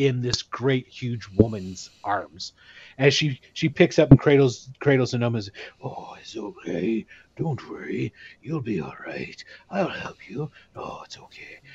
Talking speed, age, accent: 170 wpm, 30-49, American